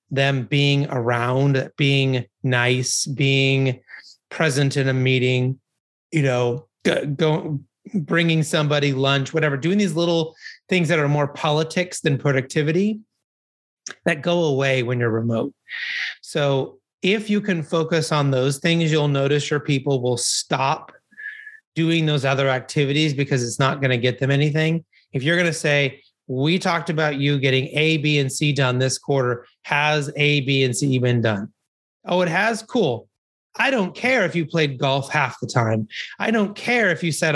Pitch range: 135-165 Hz